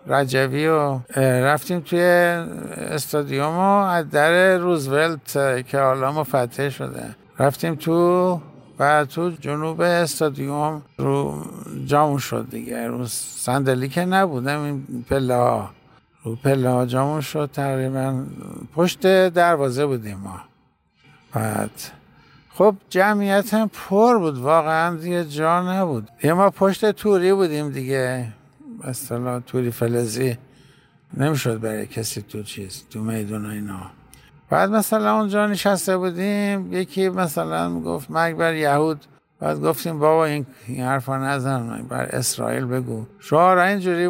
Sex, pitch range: male, 125-175 Hz